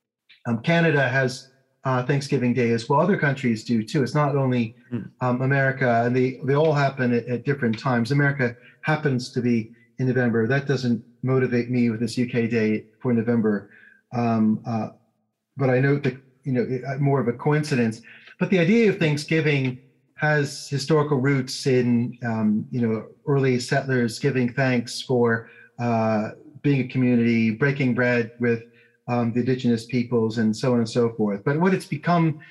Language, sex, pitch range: English, male, 120-140 Hz